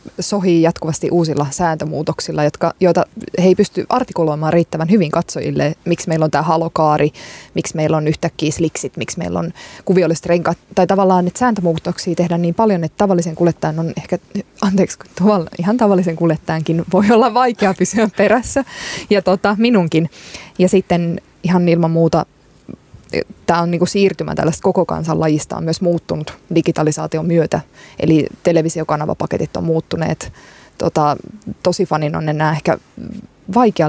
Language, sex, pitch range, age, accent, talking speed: Finnish, female, 160-190 Hz, 20-39, native, 145 wpm